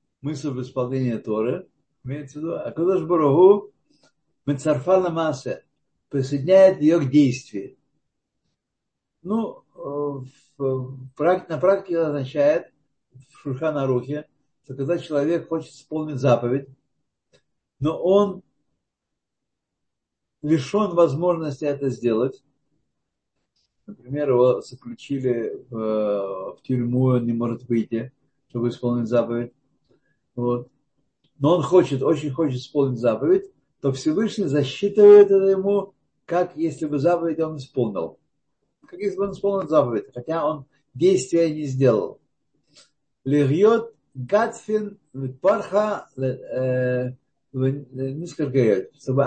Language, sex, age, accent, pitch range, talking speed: Russian, male, 60-79, native, 130-175 Hz, 95 wpm